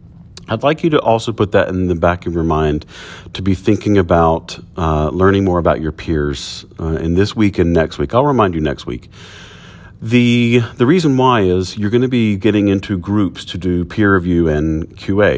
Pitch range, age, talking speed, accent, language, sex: 85-105 Hz, 40-59, 205 wpm, American, English, male